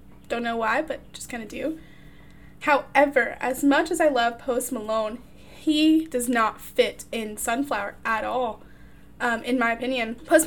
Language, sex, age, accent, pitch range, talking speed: English, female, 10-29, American, 230-285 Hz, 165 wpm